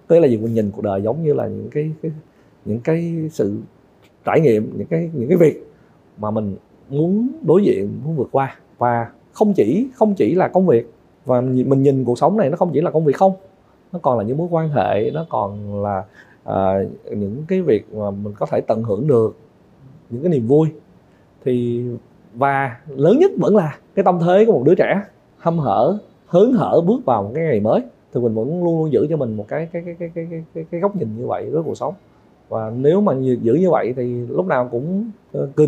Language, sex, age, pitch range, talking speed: Vietnamese, male, 20-39, 125-190 Hz, 230 wpm